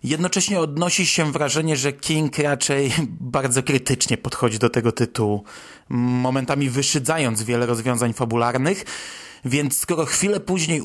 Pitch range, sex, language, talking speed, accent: 135-170 Hz, male, Polish, 120 wpm, native